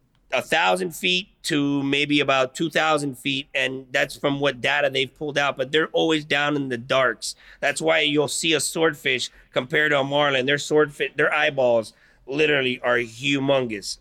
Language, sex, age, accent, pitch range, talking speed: English, male, 30-49, American, 130-155 Hz, 175 wpm